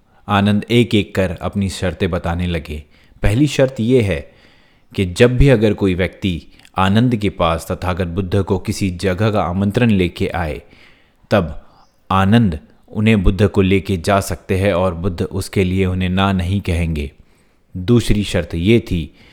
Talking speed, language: 160 wpm, Hindi